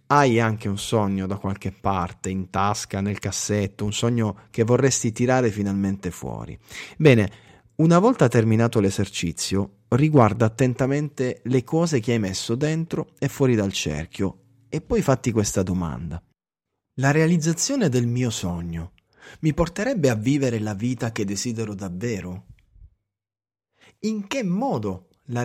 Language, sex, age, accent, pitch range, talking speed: Italian, male, 30-49, native, 100-130 Hz, 135 wpm